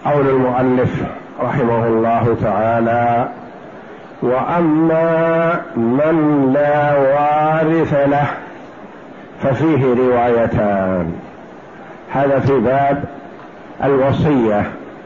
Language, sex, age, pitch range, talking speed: Arabic, male, 60-79, 145-180 Hz, 65 wpm